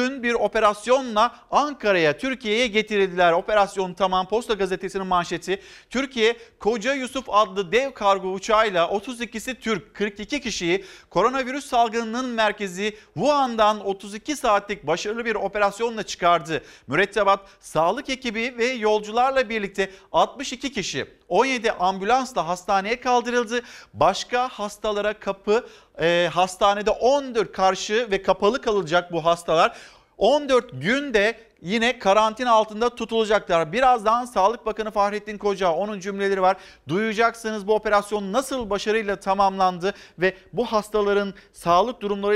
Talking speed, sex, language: 110 wpm, male, Turkish